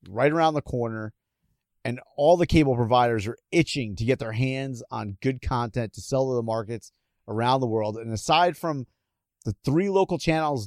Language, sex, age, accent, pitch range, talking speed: English, male, 30-49, American, 115-155 Hz, 185 wpm